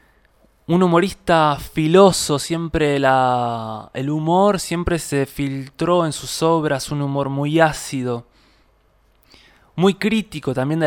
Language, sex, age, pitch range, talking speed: Spanish, male, 20-39, 130-170 Hz, 110 wpm